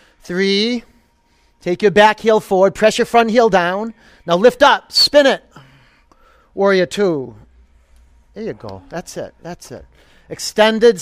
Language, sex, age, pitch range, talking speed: English, male, 40-59, 160-205 Hz, 140 wpm